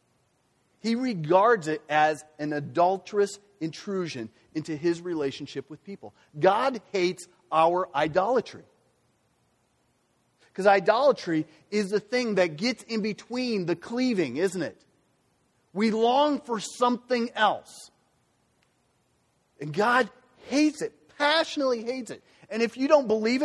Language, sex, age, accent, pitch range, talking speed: English, male, 40-59, American, 140-205 Hz, 120 wpm